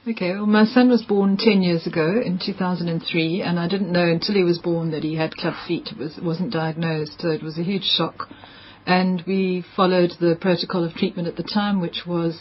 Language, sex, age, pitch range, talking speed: English, female, 40-59, 165-180 Hz, 225 wpm